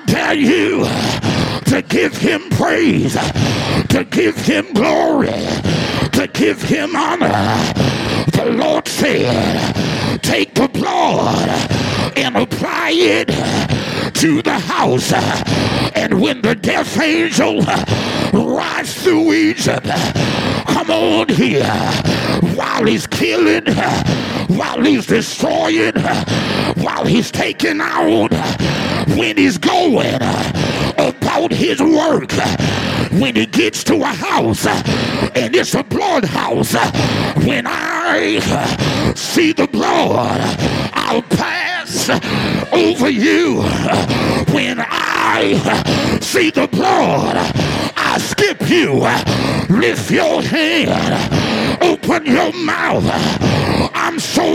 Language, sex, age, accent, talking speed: English, male, 50-69, American, 100 wpm